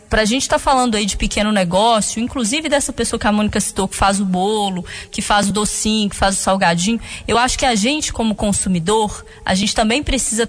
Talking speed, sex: 225 wpm, female